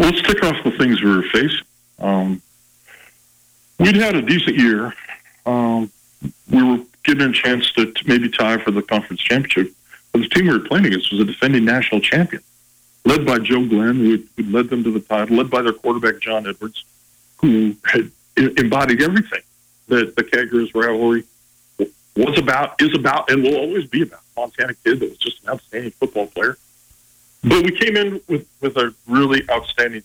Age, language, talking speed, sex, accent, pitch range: 50-69, English, 190 wpm, male, American, 110-130 Hz